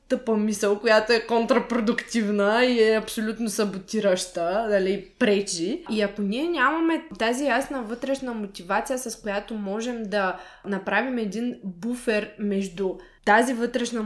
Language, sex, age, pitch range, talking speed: Bulgarian, female, 20-39, 200-250 Hz, 125 wpm